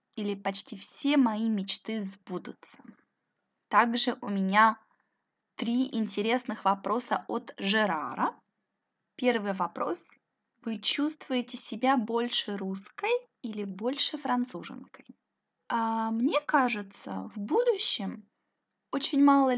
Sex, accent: female, native